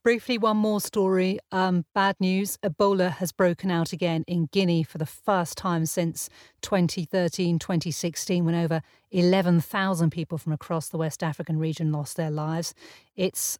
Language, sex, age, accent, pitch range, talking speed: English, female, 40-59, British, 170-200 Hz, 150 wpm